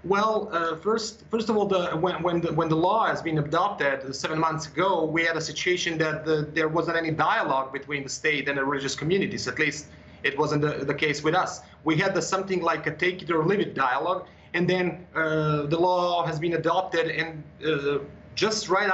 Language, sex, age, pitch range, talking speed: English, male, 30-49, 155-180 Hz, 220 wpm